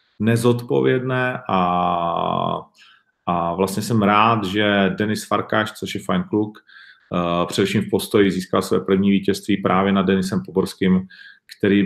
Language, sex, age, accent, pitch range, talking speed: Czech, male, 40-59, native, 95-105 Hz, 125 wpm